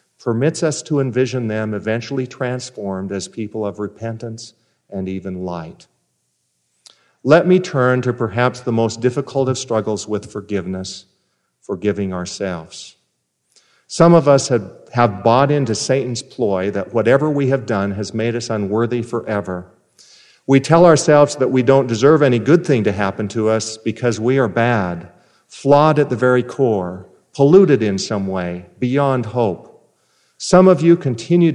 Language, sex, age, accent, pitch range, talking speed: English, male, 50-69, American, 105-145 Hz, 150 wpm